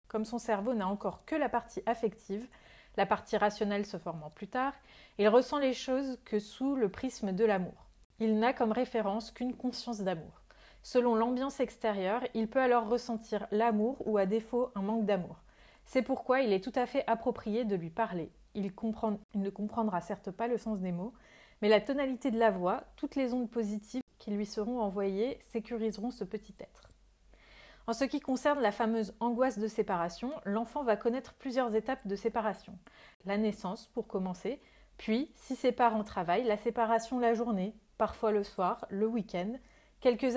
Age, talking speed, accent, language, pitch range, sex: 30-49, 180 wpm, French, French, 205-245 Hz, female